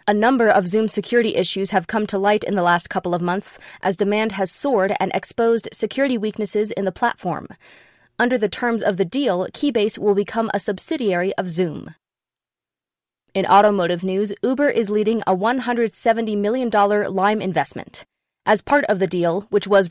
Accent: American